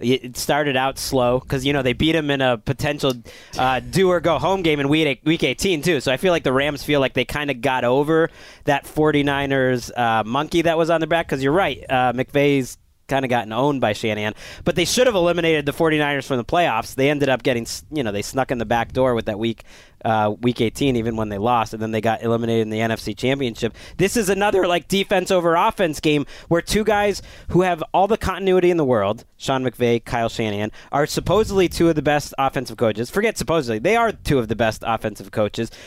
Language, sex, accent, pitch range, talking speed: English, male, American, 115-160 Hz, 235 wpm